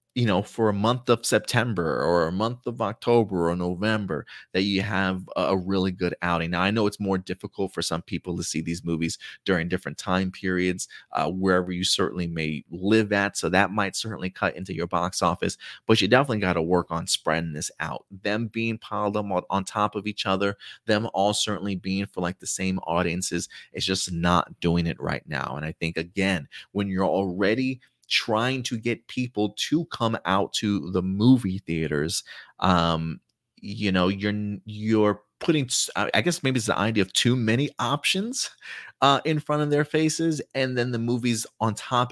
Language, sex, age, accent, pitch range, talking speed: English, male, 30-49, American, 90-115 Hz, 190 wpm